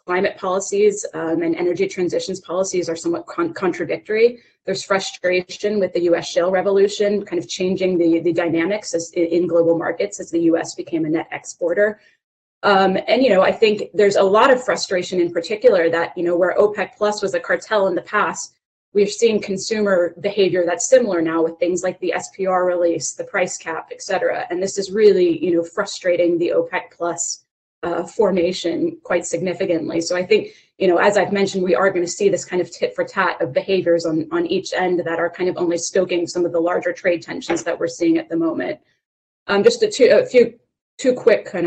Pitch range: 170-205 Hz